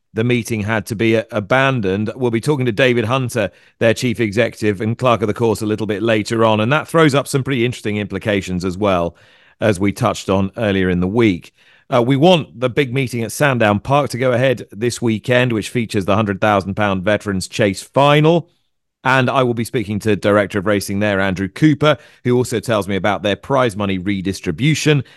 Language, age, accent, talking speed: English, 30-49, British, 205 wpm